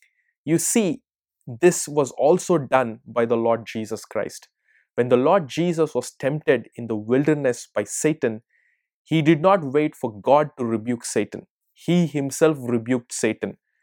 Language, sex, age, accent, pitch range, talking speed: English, male, 20-39, Indian, 115-155 Hz, 150 wpm